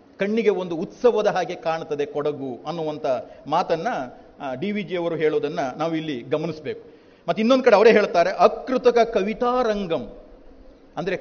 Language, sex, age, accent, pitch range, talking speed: Kannada, male, 40-59, native, 160-225 Hz, 135 wpm